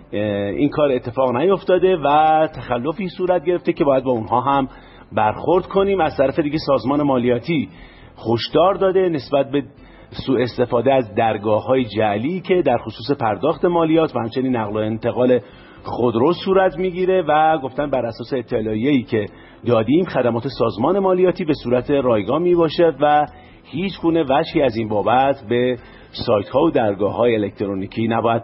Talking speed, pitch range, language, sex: 150 wpm, 120-170 Hz, Persian, male